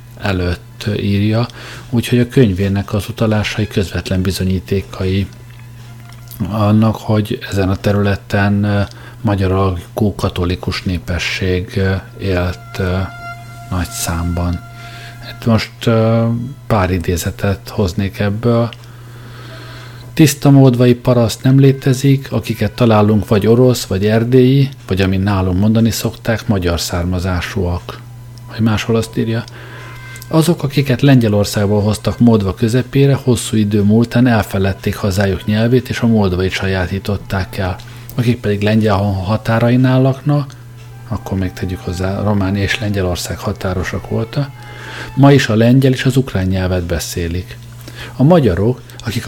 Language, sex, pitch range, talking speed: Hungarian, male, 100-120 Hz, 110 wpm